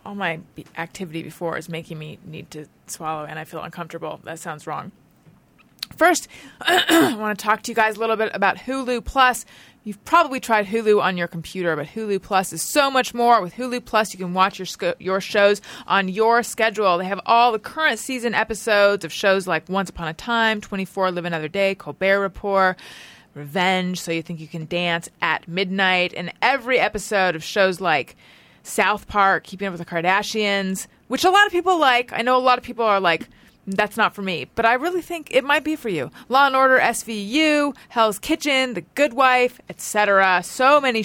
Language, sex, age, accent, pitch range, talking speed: English, female, 30-49, American, 185-240 Hz, 200 wpm